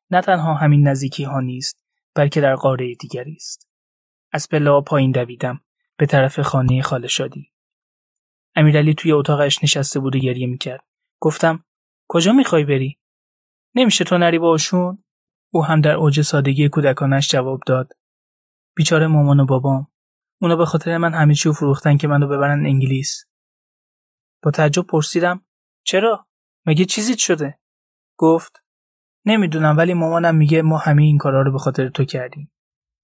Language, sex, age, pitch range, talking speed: Persian, male, 20-39, 135-165 Hz, 140 wpm